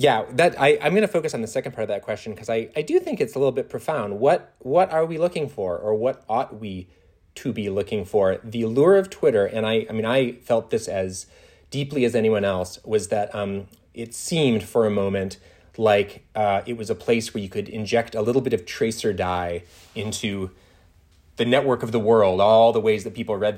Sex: male